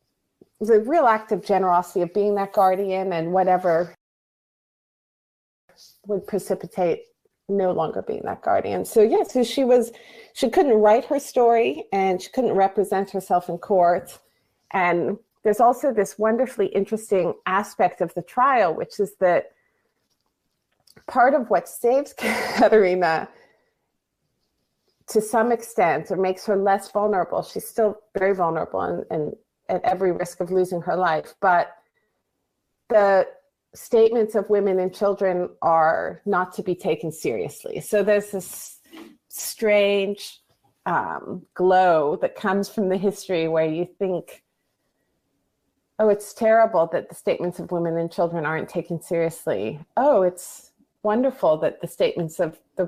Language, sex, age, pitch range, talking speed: English, female, 30-49, 180-220 Hz, 140 wpm